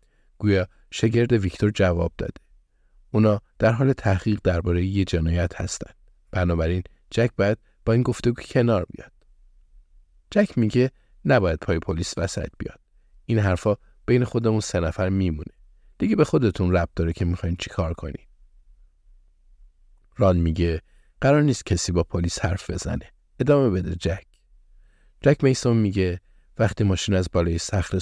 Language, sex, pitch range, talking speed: Persian, male, 85-110 Hz, 135 wpm